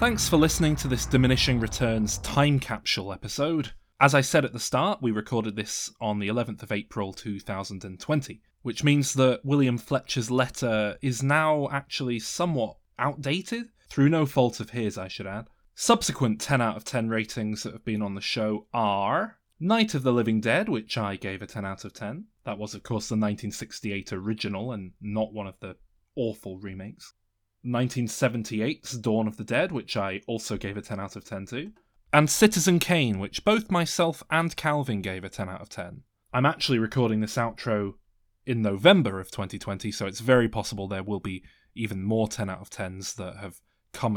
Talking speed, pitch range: 185 wpm, 105-130 Hz